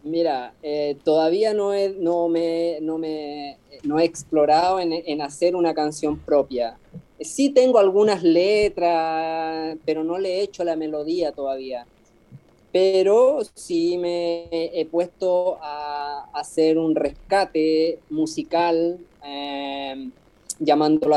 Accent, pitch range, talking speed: Argentinian, 155-185 Hz, 120 wpm